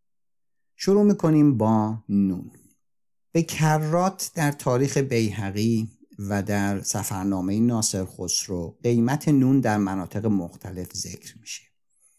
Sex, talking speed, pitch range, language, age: male, 105 wpm, 100-125 Hz, Persian, 50-69